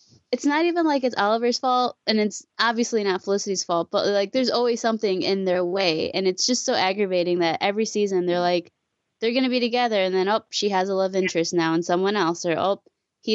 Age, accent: 20-39, American